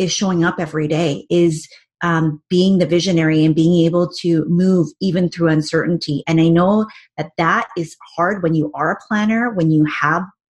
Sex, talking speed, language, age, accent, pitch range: female, 185 wpm, English, 30-49, American, 165-190 Hz